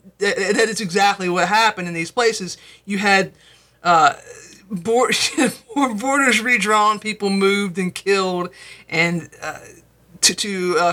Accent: American